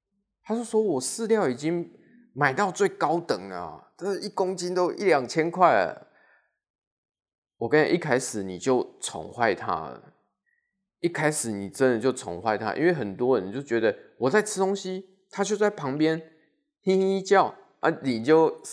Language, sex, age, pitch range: Chinese, male, 20-39, 130-215 Hz